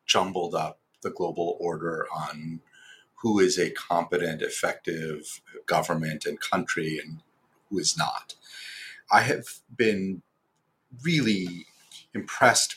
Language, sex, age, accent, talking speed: English, male, 40-59, American, 110 wpm